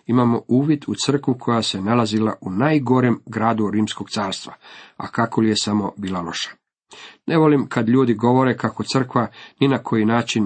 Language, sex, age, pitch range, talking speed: Croatian, male, 50-69, 110-140 Hz, 170 wpm